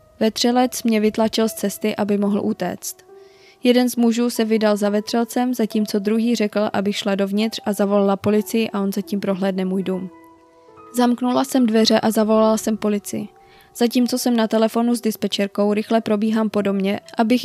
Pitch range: 205-230 Hz